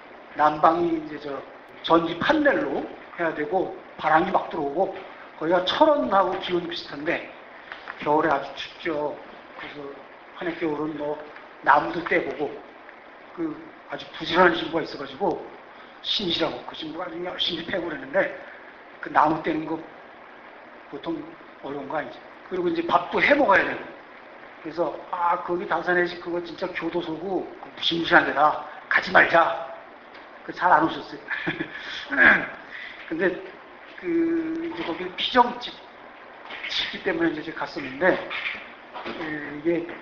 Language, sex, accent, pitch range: Korean, male, native, 155-200 Hz